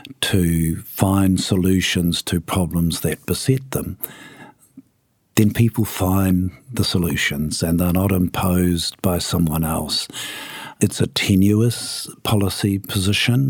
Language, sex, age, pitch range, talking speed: English, male, 50-69, 85-95 Hz, 110 wpm